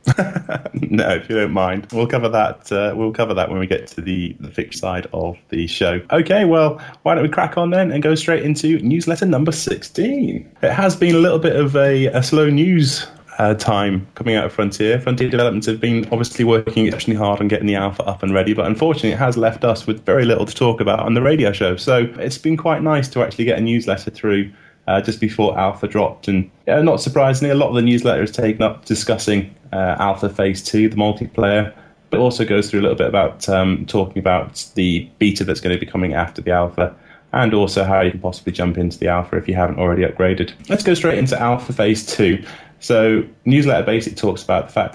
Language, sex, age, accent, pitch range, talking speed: English, male, 20-39, British, 95-130 Hz, 230 wpm